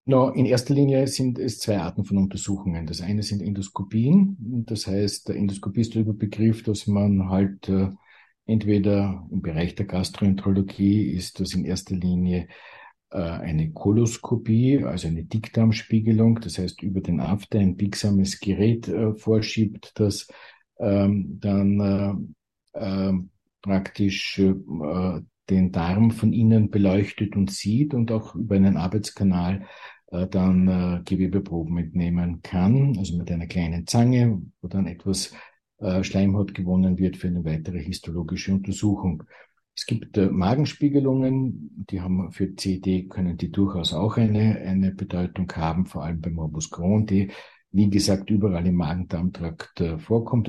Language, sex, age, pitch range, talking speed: German, male, 50-69, 90-105 Hz, 145 wpm